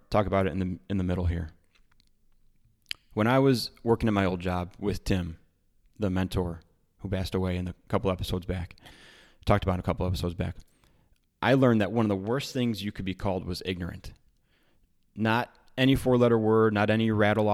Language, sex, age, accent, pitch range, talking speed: English, male, 20-39, American, 90-110 Hz, 190 wpm